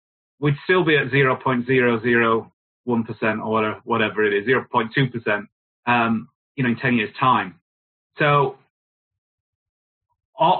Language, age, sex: English, 30-49, male